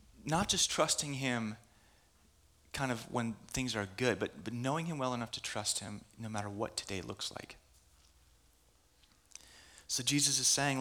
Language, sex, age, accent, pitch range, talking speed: English, male, 30-49, American, 80-125 Hz, 160 wpm